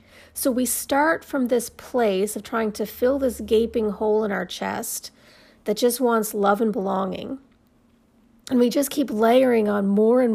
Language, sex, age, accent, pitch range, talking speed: English, female, 40-59, American, 200-245 Hz, 175 wpm